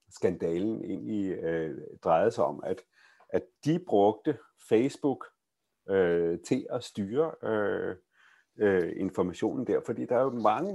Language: Danish